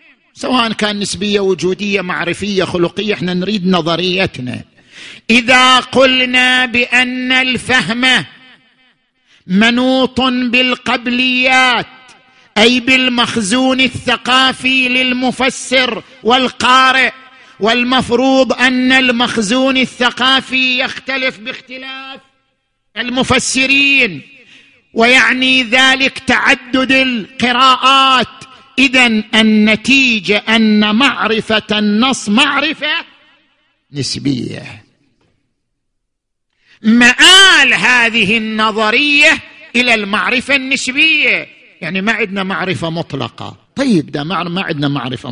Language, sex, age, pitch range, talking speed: Arabic, male, 50-69, 185-260 Hz, 70 wpm